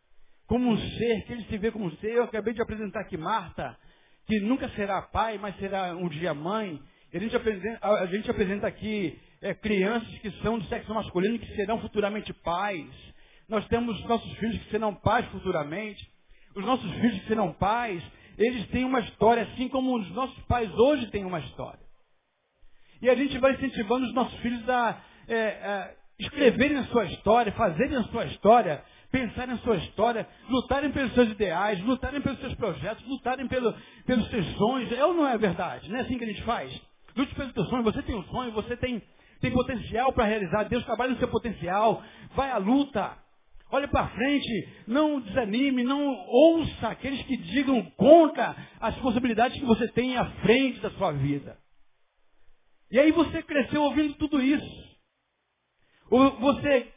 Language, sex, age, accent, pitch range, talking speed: Portuguese, male, 60-79, Brazilian, 205-255 Hz, 180 wpm